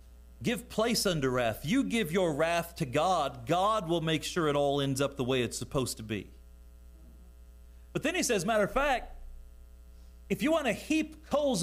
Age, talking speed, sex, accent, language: 40-59, 190 wpm, male, American, English